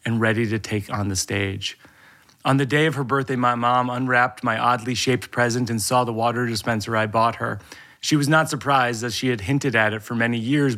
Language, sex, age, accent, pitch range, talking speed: English, male, 30-49, American, 110-125 Hz, 225 wpm